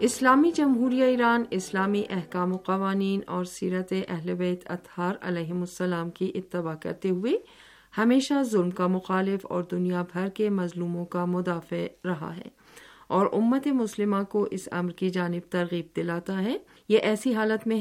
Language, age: Urdu, 50-69